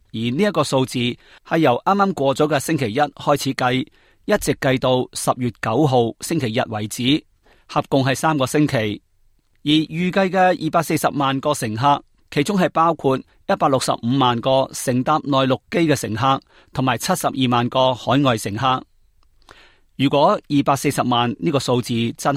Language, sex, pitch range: Chinese, male, 125-155 Hz